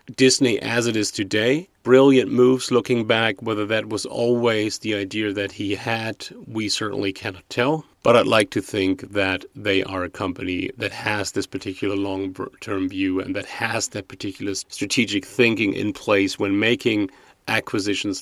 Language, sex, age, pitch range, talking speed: English, male, 30-49, 100-120 Hz, 165 wpm